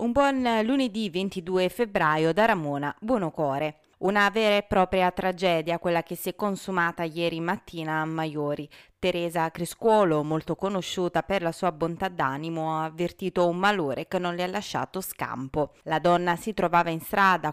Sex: female